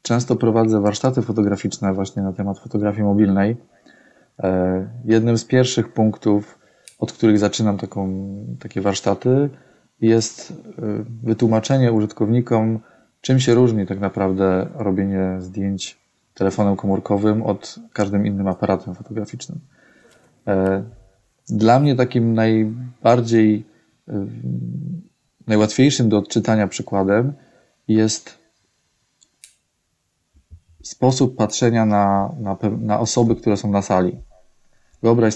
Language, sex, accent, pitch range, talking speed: Polish, male, native, 95-115 Hz, 90 wpm